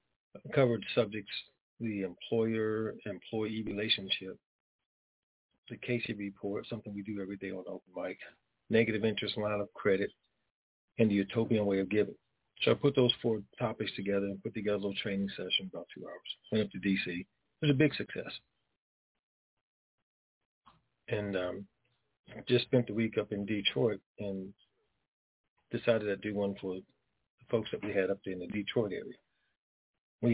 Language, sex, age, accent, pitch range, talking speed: English, male, 40-59, American, 100-120 Hz, 160 wpm